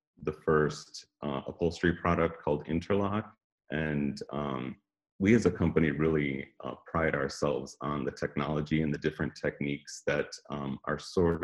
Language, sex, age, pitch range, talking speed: English, male, 30-49, 75-85 Hz, 145 wpm